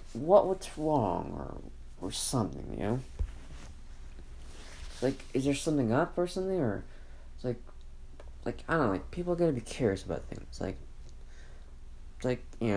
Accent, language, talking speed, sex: American, English, 150 wpm, male